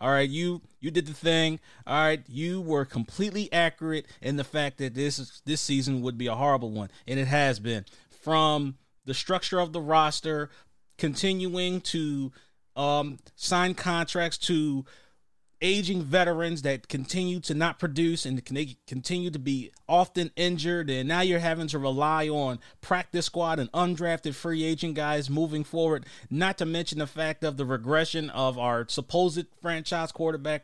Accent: American